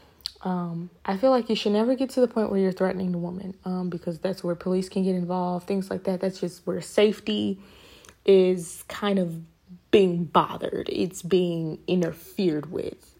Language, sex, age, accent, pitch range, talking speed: English, female, 20-39, American, 185-205 Hz, 180 wpm